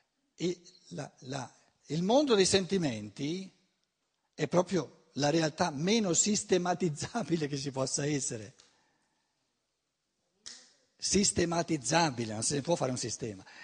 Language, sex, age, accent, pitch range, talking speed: Italian, male, 60-79, native, 125-185 Hz, 90 wpm